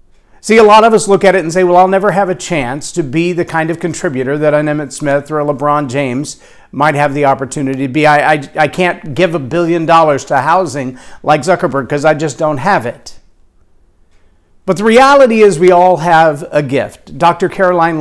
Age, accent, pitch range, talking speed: 50-69, American, 145-205 Hz, 215 wpm